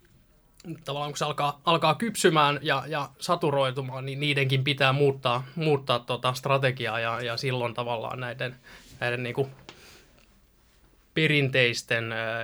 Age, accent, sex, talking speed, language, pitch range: 20-39, native, male, 115 wpm, Finnish, 120-140 Hz